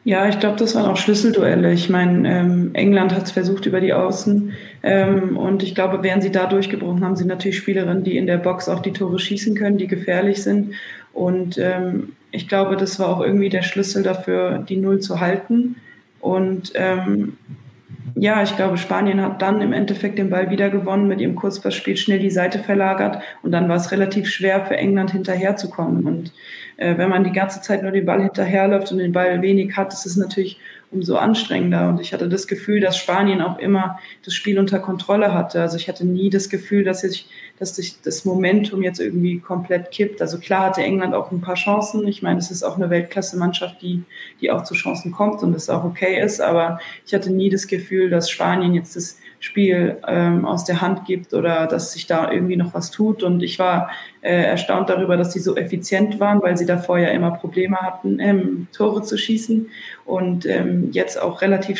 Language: German